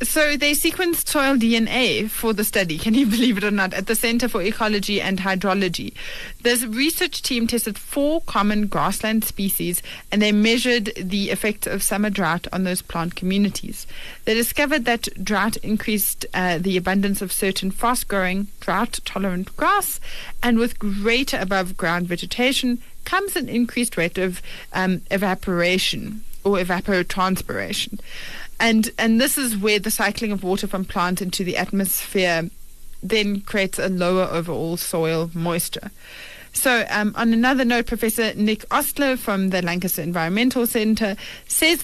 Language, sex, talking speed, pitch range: English, female, 150 wpm, 190-235 Hz